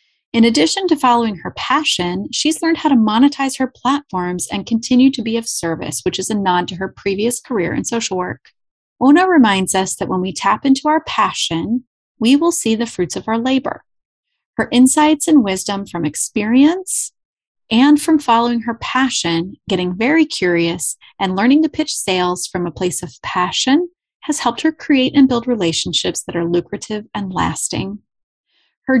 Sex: female